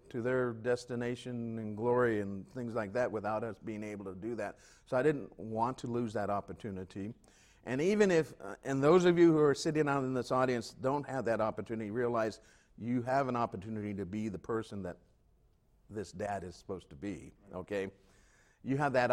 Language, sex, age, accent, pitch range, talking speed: English, male, 50-69, American, 100-135 Hz, 200 wpm